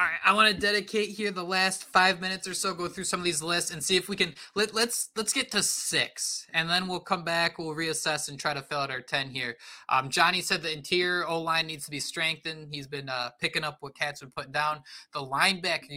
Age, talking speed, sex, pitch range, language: 20-39, 250 wpm, male, 140-165 Hz, English